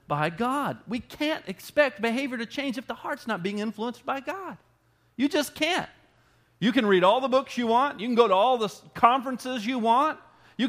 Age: 40-59